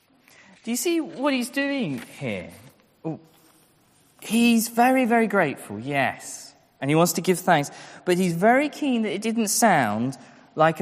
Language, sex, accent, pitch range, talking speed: English, male, British, 145-200 Hz, 150 wpm